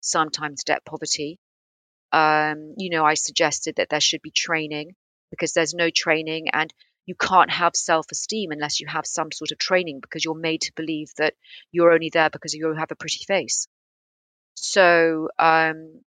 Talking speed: 170 wpm